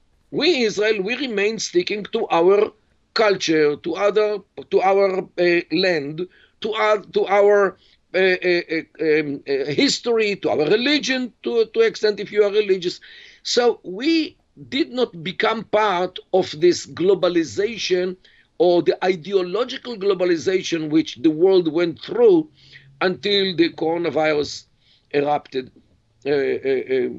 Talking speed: 120 wpm